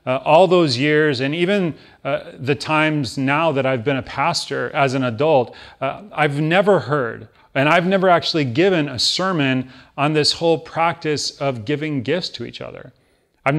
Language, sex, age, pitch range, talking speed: English, male, 30-49, 130-160 Hz, 175 wpm